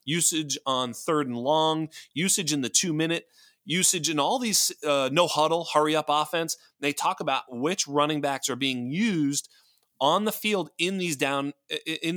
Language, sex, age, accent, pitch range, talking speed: English, male, 30-49, American, 130-170 Hz, 180 wpm